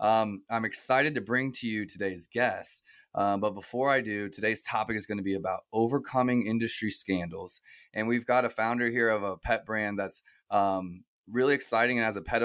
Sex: male